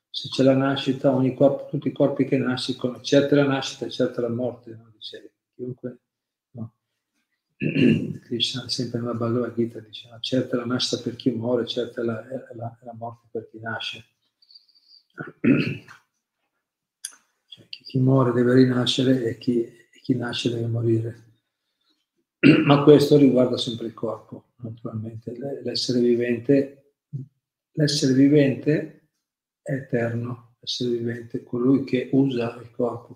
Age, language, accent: 50-69, Italian, native